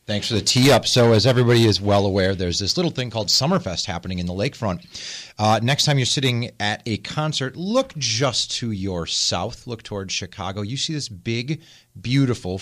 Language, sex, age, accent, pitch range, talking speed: English, male, 30-49, American, 95-130 Hz, 200 wpm